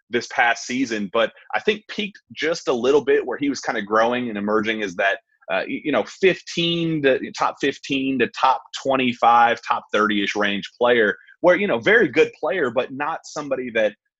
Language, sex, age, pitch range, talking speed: English, male, 30-49, 110-185 Hz, 195 wpm